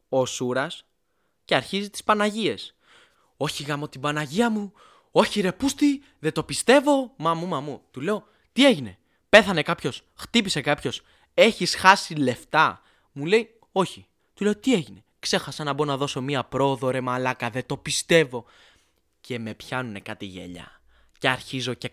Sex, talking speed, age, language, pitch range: male, 155 wpm, 20-39, Greek, 125-190 Hz